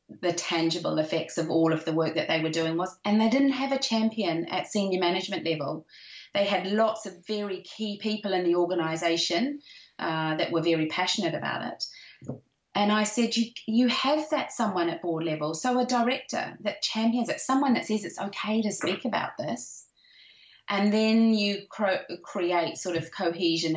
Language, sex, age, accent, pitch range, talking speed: English, female, 30-49, British, 170-230 Hz, 185 wpm